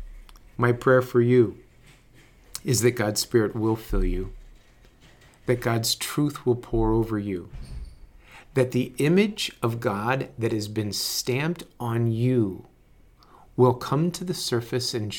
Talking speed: 140 wpm